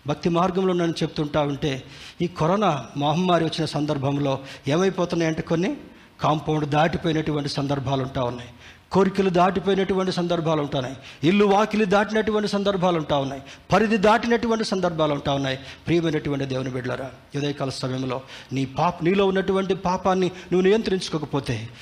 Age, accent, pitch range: 50-69, native, 145-200 Hz